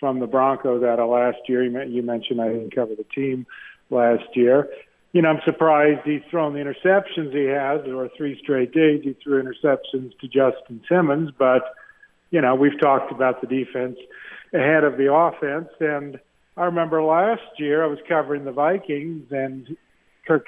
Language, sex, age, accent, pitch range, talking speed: English, male, 50-69, American, 135-160 Hz, 180 wpm